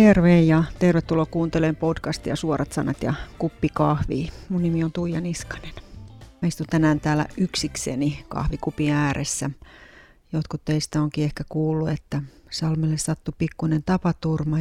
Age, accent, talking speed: 30-49, native, 125 wpm